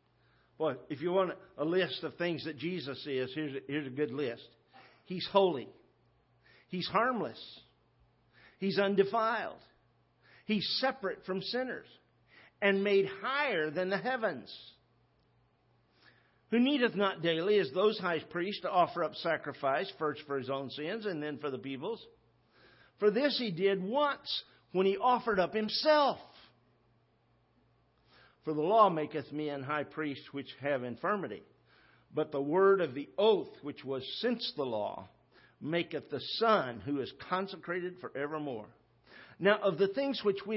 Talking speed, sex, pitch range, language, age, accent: 145 wpm, male, 145-205 Hz, English, 50-69, American